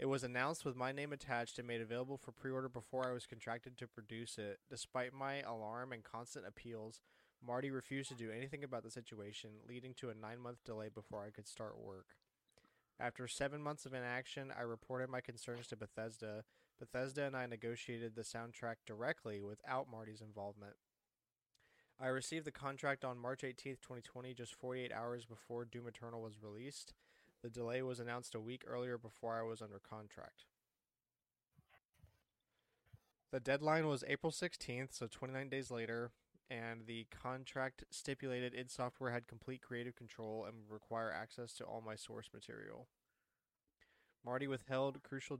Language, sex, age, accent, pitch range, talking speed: English, male, 20-39, American, 115-130 Hz, 165 wpm